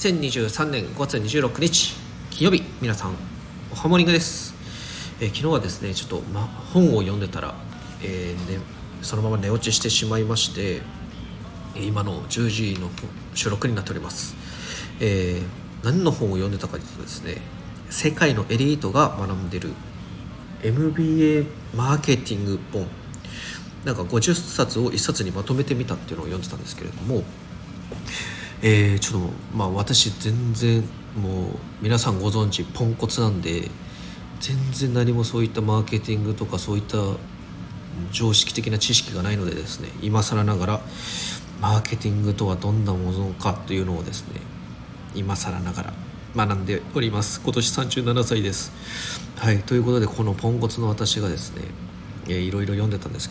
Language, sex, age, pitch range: Japanese, male, 40-59, 95-120 Hz